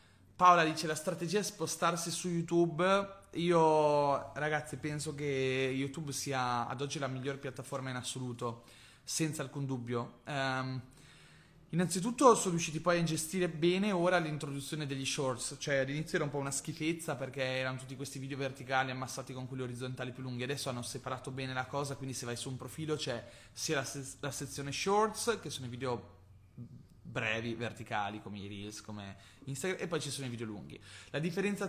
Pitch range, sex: 130-170 Hz, male